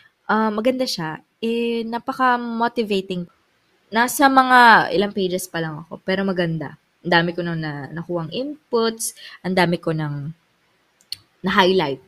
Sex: female